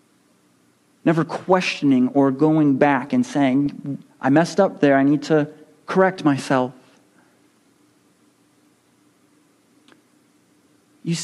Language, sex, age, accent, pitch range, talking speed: English, male, 40-59, American, 165-225 Hz, 90 wpm